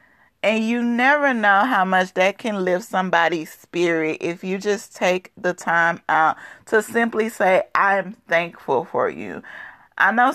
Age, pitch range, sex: 30-49, 180-230 Hz, female